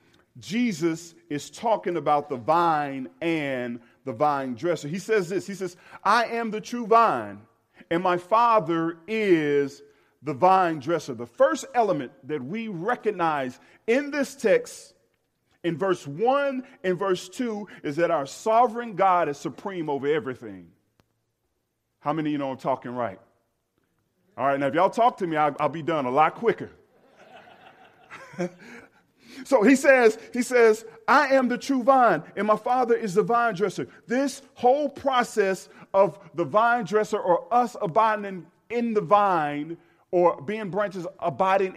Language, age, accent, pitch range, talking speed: English, 40-59, American, 150-225 Hz, 155 wpm